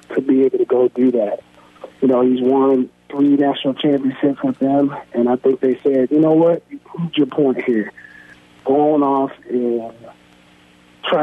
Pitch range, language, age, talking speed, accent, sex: 115-140 Hz, English, 40-59, 180 wpm, American, male